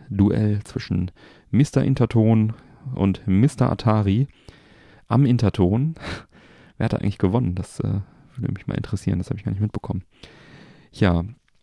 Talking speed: 140 wpm